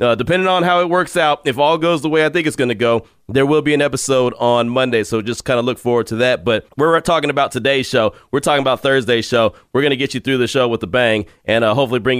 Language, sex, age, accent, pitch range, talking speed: English, male, 30-49, American, 125-170 Hz, 290 wpm